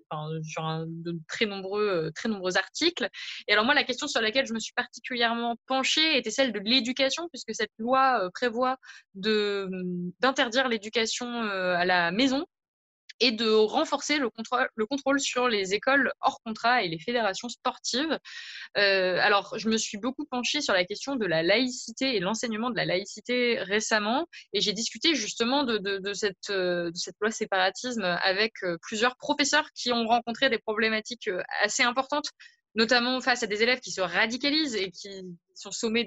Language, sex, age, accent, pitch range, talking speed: French, female, 20-39, French, 195-255 Hz, 170 wpm